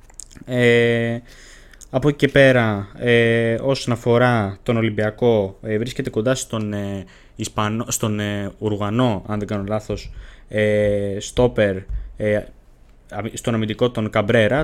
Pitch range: 105-130 Hz